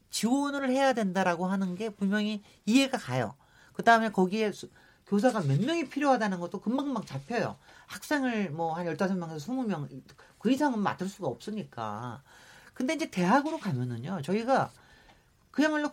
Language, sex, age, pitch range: Korean, male, 40-59, 165-245 Hz